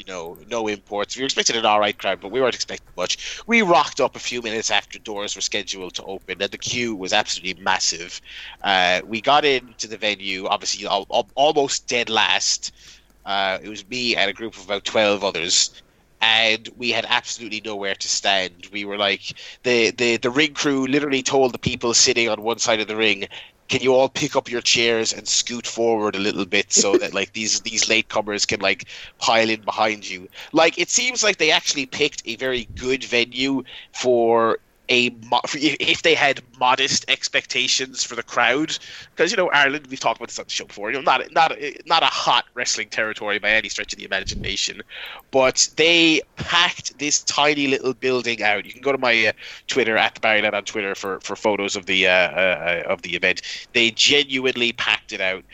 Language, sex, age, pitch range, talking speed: English, male, 30-49, 105-130 Hz, 205 wpm